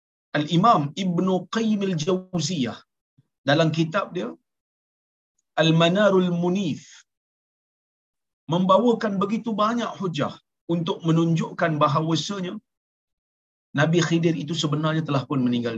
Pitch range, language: 155-215 Hz, Malayalam